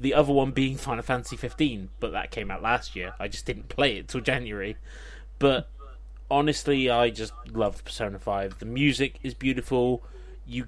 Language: English